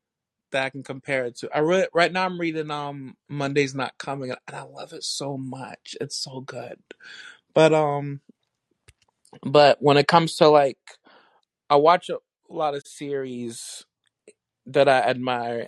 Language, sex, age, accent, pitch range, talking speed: English, male, 20-39, American, 125-150 Hz, 160 wpm